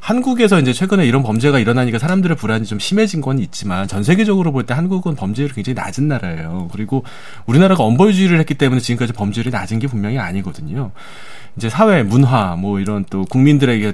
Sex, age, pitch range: male, 30-49, 105-160 Hz